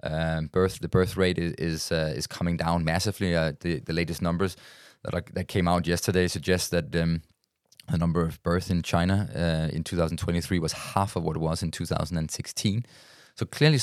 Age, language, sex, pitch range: 20-39, English, male, 85-100 Hz